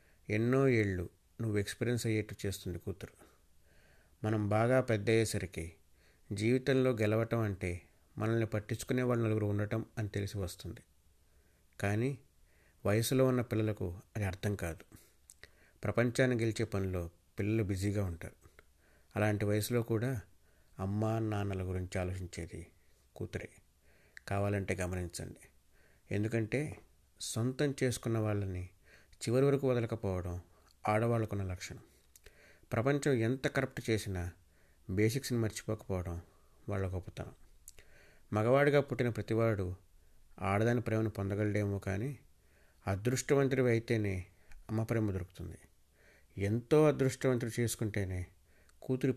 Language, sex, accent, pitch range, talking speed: Telugu, male, native, 85-115 Hz, 90 wpm